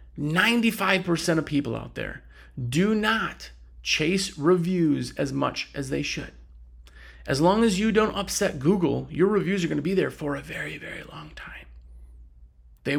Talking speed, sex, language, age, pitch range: 150 wpm, male, English, 30-49, 120-185 Hz